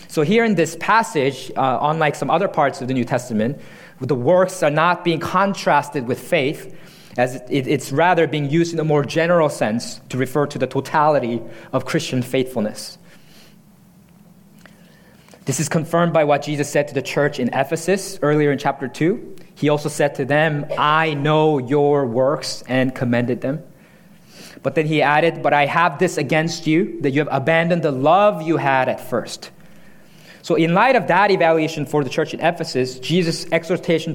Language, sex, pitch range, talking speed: English, male, 145-180 Hz, 180 wpm